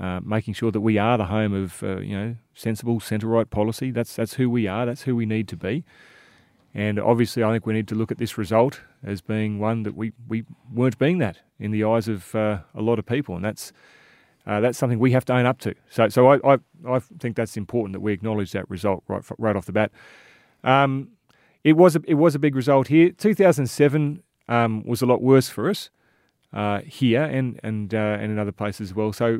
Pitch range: 105-130 Hz